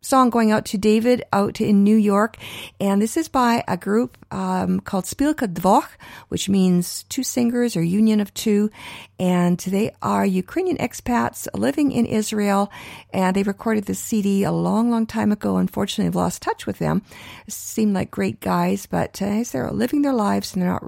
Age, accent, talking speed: 50-69, American, 185 wpm